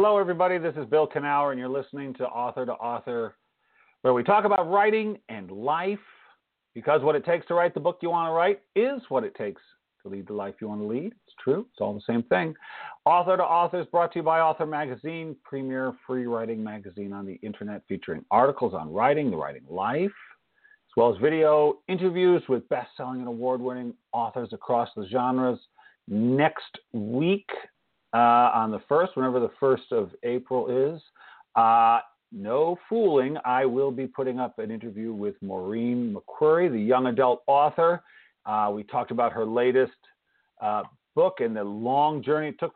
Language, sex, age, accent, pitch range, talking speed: English, male, 50-69, American, 120-175 Hz, 185 wpm